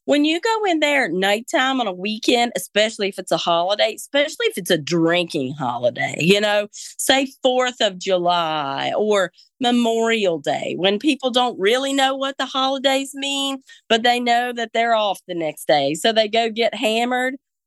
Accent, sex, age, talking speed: American, female, 40-59, 180 wpm